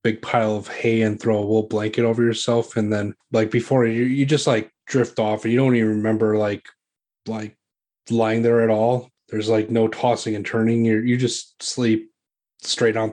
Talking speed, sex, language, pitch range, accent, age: 200 wpm, male, English, 110-125 Hz, American, 20-39